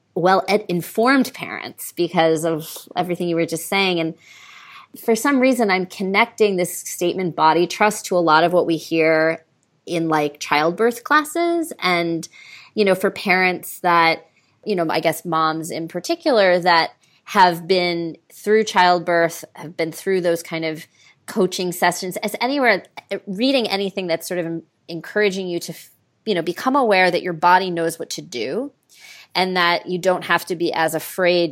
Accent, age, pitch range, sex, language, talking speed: American, 30-49, 165-195 Hz, female, English, 165 wpm